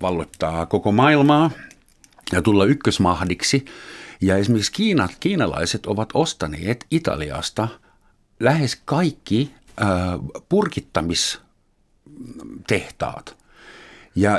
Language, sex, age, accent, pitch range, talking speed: Finnish, male, 50-69, native, 90-125 Hz, 75 wpm